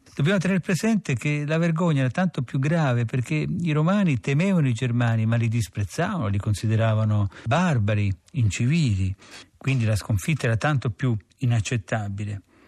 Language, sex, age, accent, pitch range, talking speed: Italian, male, 50-69, native, 110-140 Hz, 140 wpm